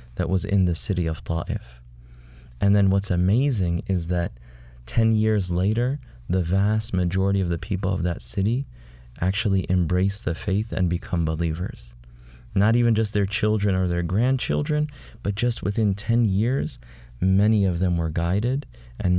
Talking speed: 160 wpm